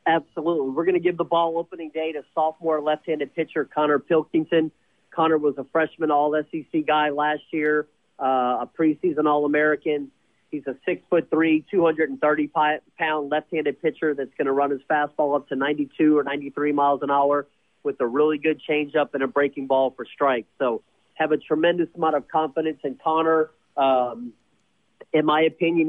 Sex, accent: male, American